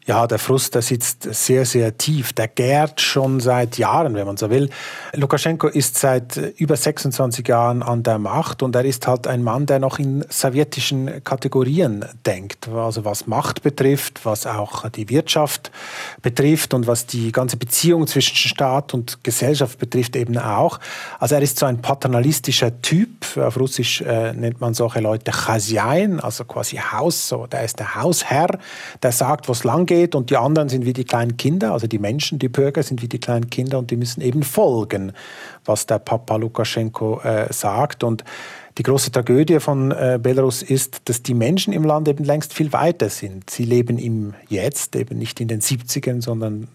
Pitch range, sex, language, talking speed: 115-140 Hz, male, German, 185 wpm